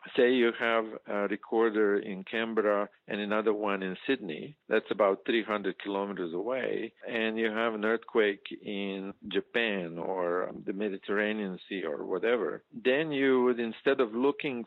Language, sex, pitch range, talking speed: English, male, 100-120 Hz, 145 wpm